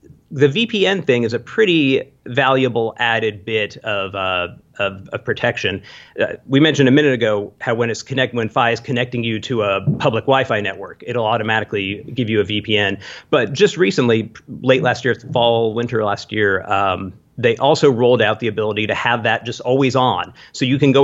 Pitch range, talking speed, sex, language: 110-140 Hz, 190 wpm, male, English